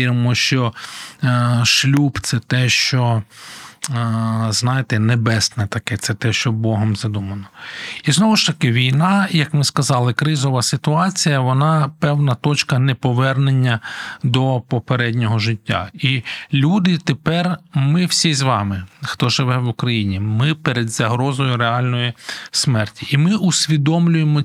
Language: Ukrainian